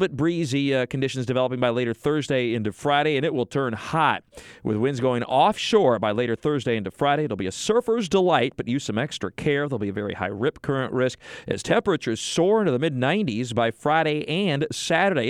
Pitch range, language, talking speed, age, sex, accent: 120-150 Hz, English, 210 wpm, 40-59, male, American